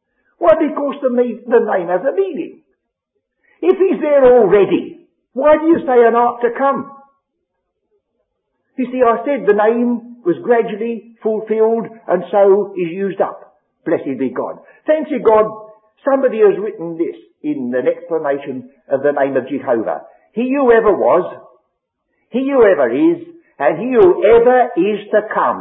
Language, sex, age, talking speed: English, male, 60-79, 160 wpm